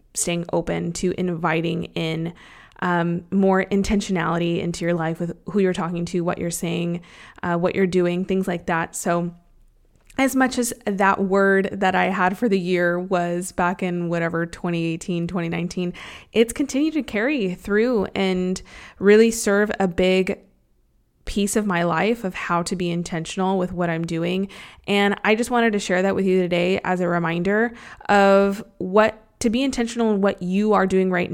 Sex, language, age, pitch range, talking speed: female, English, 20-39, 175-205 Hz, 175 wpm